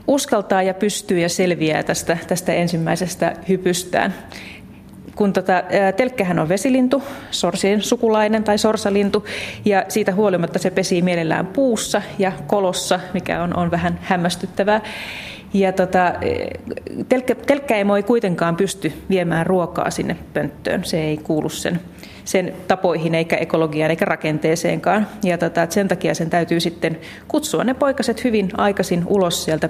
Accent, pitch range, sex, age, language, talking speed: native, 170-210 Hz, female, 30-49, Finnish, 130 wpm